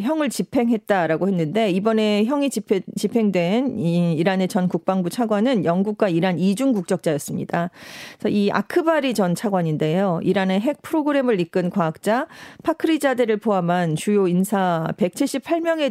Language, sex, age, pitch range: Korean, female, 40-59, 180-250 Hz